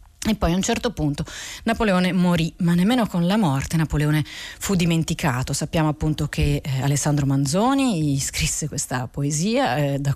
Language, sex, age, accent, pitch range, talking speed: Italian, female, 30-49, native, 160-195 Hz, 160 wpm